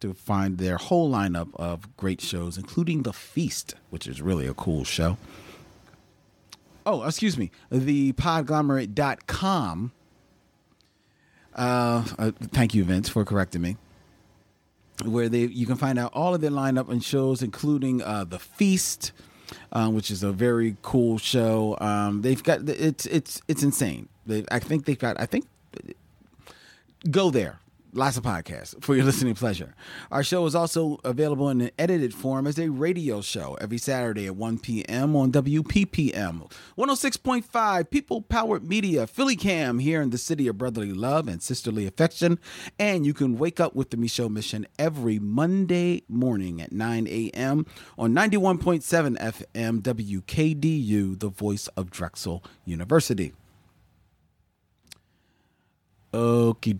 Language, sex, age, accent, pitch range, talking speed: English, male, 30-49, American, 100-150 Hz, 145 wpm